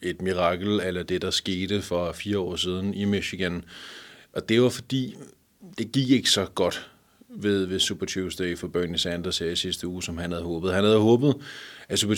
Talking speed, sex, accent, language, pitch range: 195 wpm, male, native, Danish, 95-120 Hz